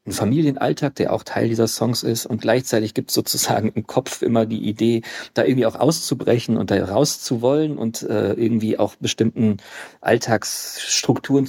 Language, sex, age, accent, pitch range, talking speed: German, male, 40-59, German, 105-125 Hz, 160 wpm